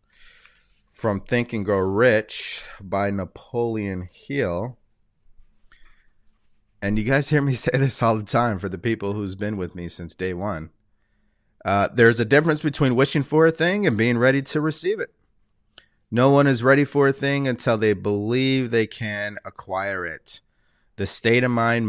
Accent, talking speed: American, 165 wpm